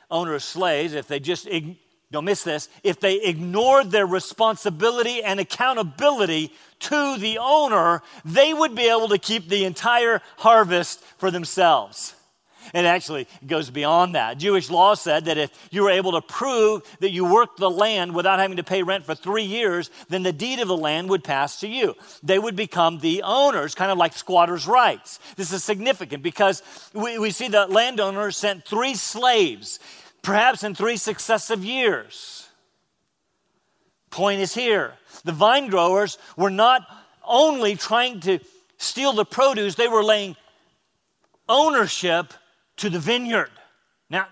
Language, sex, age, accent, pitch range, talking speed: English, male, 40-59, American, 175-230 Hz, 160 wpm